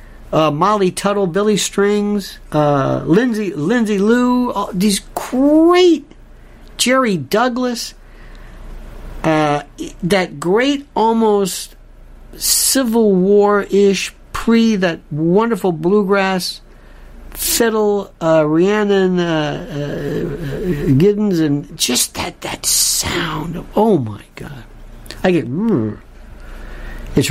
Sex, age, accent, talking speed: male, 60-79, American, 95 wpm